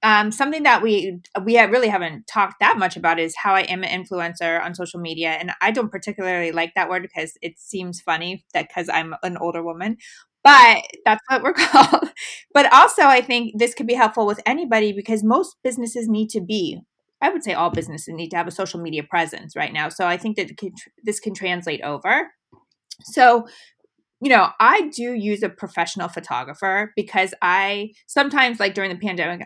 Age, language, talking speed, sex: 20-39, English, 200 wpm, female